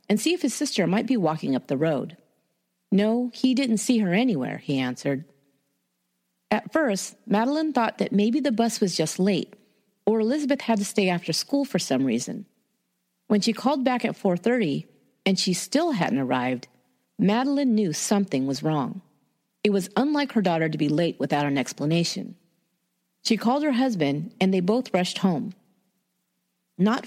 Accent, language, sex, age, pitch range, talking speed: American, English, female, 40-59, 160-235 Hz, 170 wpm